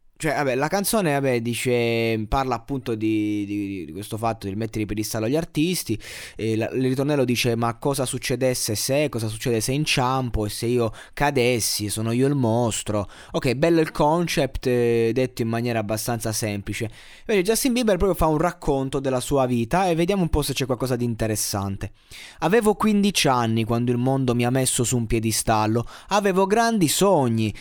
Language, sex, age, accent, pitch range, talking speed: Italian, male, 20-39, native, 110-140 Hz, 185 wpm